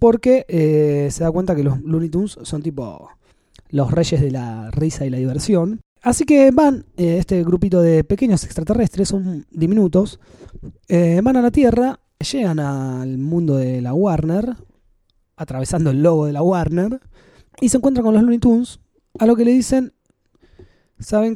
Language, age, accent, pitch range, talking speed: Spanish, 20-39, Argentinian, 145-215 Hz, 170 wpm